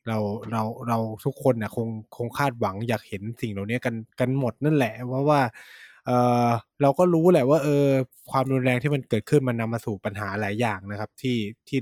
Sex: male